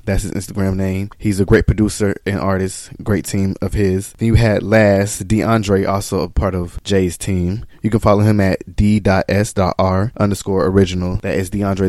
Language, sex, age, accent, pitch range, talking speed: English, male, 20-39, American, 95-110 Hz, 180 wpm